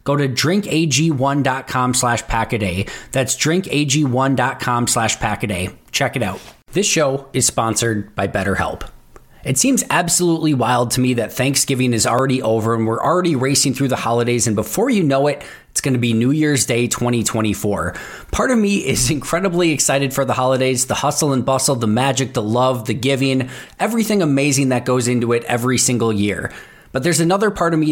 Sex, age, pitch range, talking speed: male, 20-39, 120-145 Hz, 180 wpm